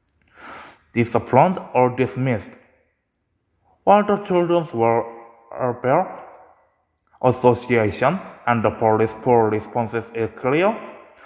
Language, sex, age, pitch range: Korean, male, 20-39, 115-170 Hz